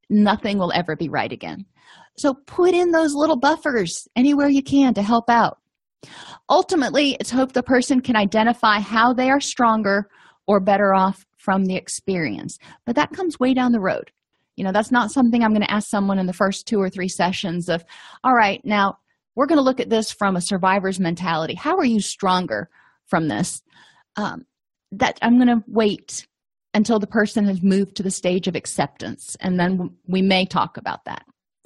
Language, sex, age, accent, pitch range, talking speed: English, female, 30-49, American, 195-260 Hz, 195 wpm